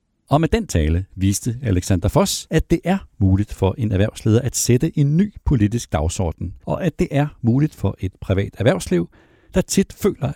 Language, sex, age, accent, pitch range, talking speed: Danish, male, 60-79, native, 100-155 Hz, 185 wpm